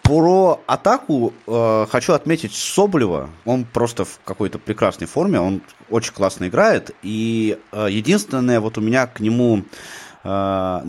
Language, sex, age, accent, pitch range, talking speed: Russian, male, 20-39, native, 105-140 Hz, 140 wpm